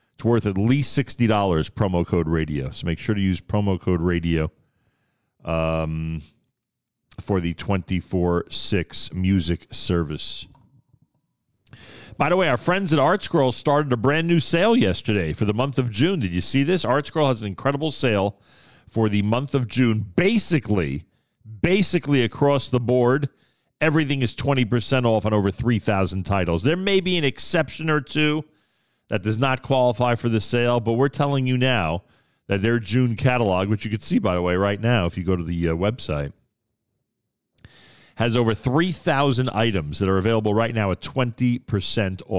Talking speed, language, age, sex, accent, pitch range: 165 wpm, English, 40-59, male, American, 95-135 Hz